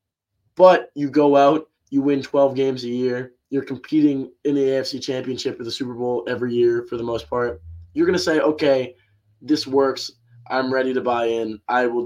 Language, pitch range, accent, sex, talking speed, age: English, 115-140 Hz, American, male, 200 wpm, 20-39